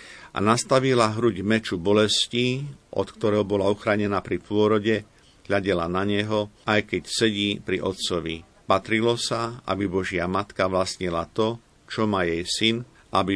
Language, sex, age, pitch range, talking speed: Slovak, male, 50-69, 95-110 Hz, 140 wpm